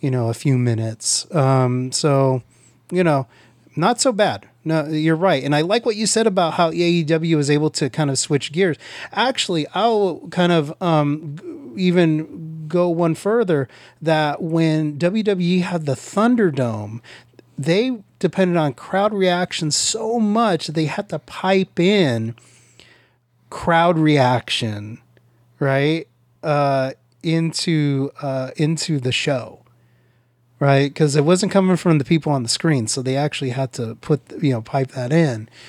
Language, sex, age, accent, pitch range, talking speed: English, male, 30-49, American, 130-175 Hz, 150 wpm